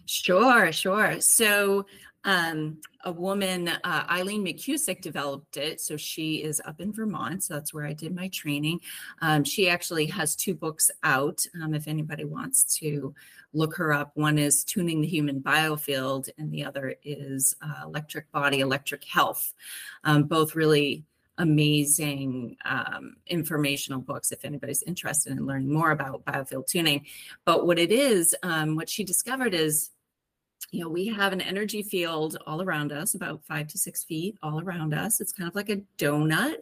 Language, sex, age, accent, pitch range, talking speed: English, female, 30-49, American, 145-185 Hz, 170 wpm